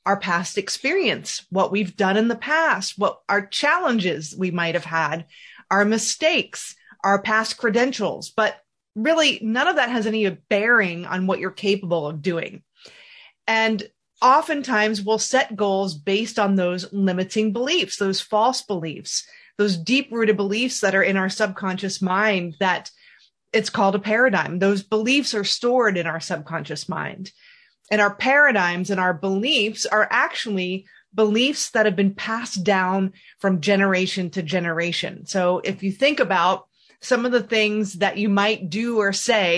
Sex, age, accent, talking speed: female, 30-49, American, 160 wpm